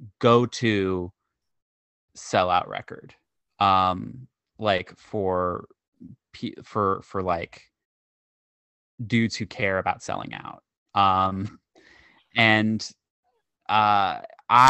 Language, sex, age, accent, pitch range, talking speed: English, male, 20-39, American, 95-115 Hz, 80 wpm